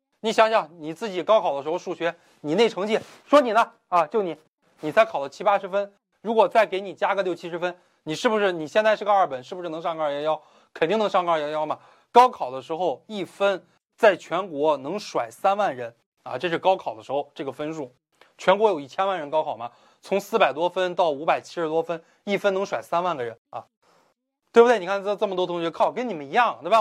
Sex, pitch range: male, 155-210 Hz